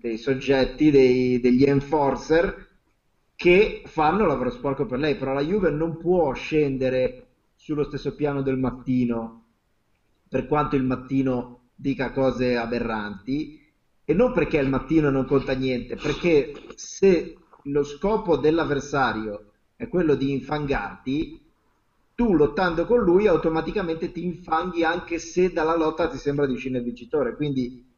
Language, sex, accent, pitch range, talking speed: Italian, male, native, 125-165 Hz, 135 wpm